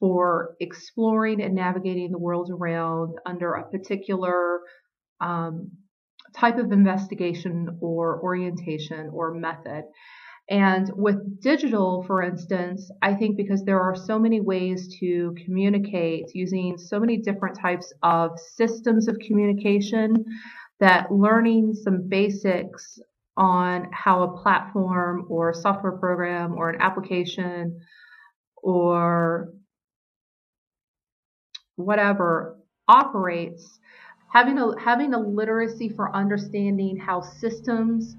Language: English